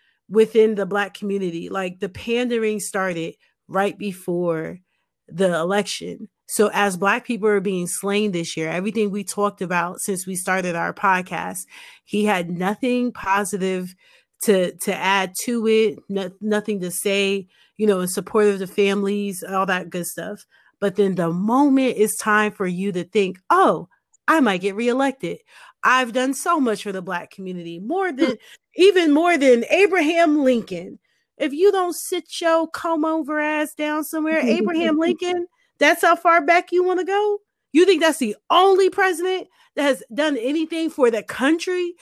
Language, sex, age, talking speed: English, female, 30-49, 165 wpm